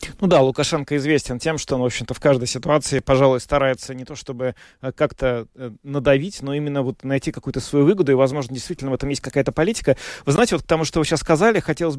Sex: male